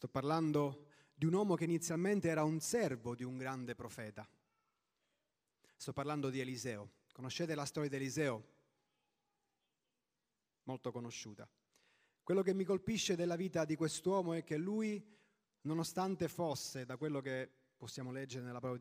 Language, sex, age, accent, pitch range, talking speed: Italian, male, 30-49, native, 135-180 Hz, 145 wpm